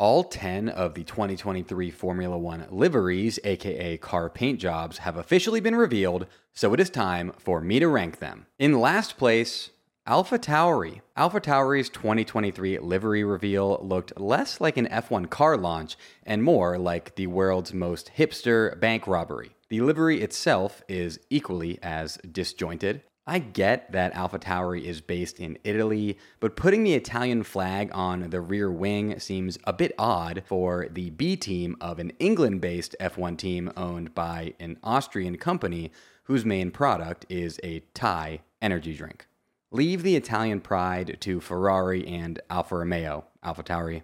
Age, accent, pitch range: 30-49, American, 85-105 Hz